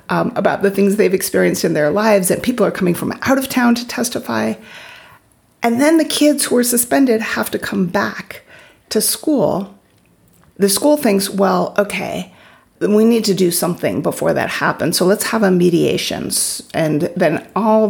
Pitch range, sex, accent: 180-230 Hz, female, American